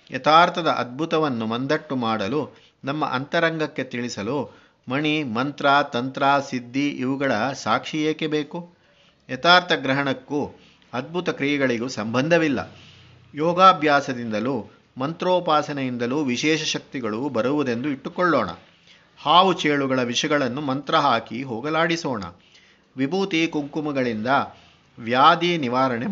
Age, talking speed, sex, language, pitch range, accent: 50-69, 85 wpm, male, Kannada, 130-160 Hz, native